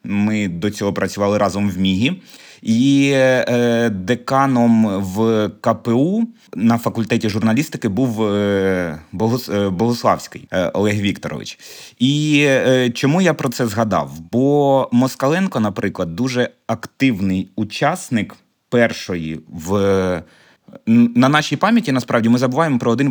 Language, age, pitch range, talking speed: Ukrainian, 20-39, 100-130 Hz, 110 wpm